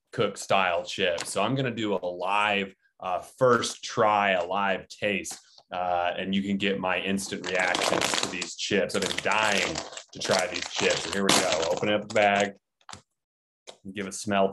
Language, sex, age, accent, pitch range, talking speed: English, male, 20-39, American, 95-115 Hz, 180 wpm